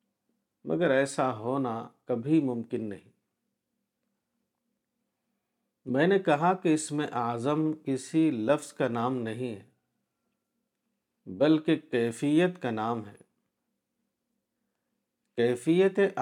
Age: 50-69